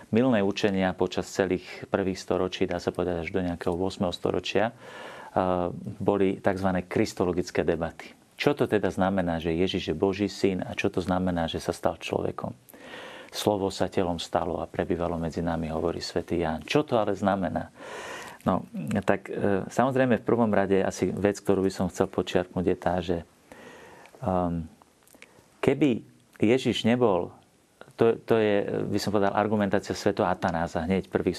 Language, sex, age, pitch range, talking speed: Slovak, male, 40-59, 90-105 Hz, 155 wpm